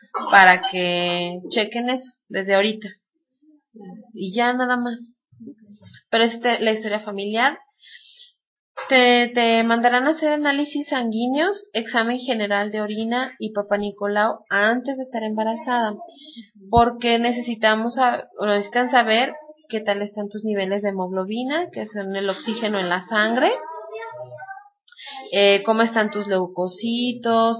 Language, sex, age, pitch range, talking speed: Spanish, female, 30-49, 200-250 Hz, 130 wpm